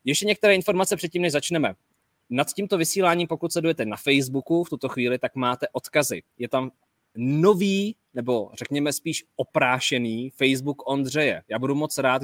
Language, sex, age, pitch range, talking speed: Czech, male, 20-39, 120-145 Hz, 155 wpm